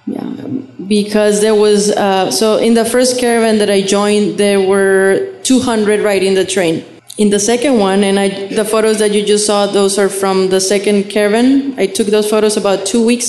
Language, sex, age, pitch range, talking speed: English, female, 20-39, 195-225 Hz, 200 wpm